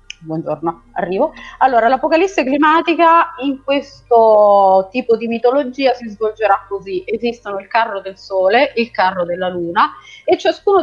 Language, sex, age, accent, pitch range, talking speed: Italian, female, 30-49, native, 190-260 Hz, 140 wpm